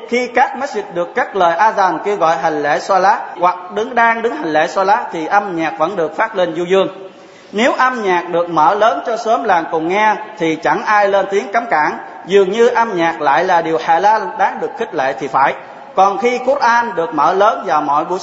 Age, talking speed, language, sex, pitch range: 20-39, 245 wpm, Vietnamese, male, 175-220 Hz